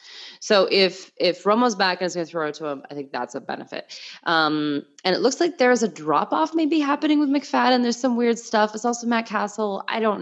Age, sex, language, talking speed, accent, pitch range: 20-39, female, English, 235 wpm, American, 155-230 Hz